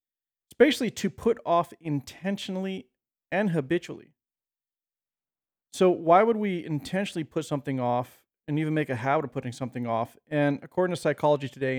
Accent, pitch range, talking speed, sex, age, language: American, 125-150 Hz, 155 wpm, male, 40-59, English